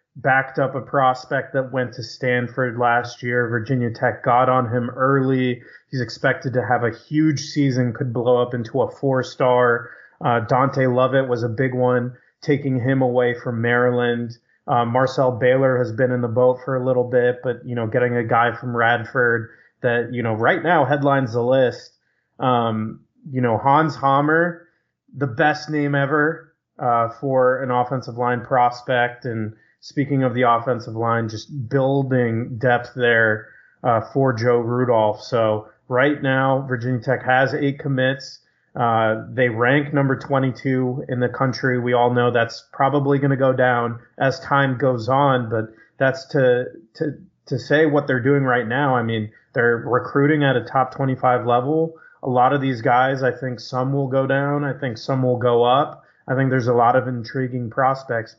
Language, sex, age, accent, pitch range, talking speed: English, male, 20-39, American, 120-135 Hz, 175 wpm